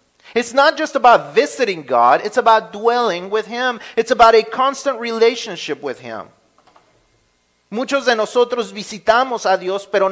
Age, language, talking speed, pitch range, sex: 40-59, Spanish, 150 wpm, 170-230 Hz, male